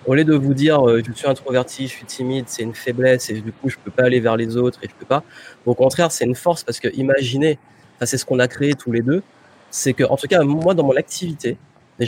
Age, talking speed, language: 30-49, 275 wpm, French